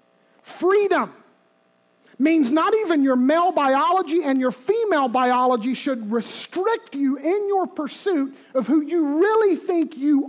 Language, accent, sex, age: English, American, male, 40-59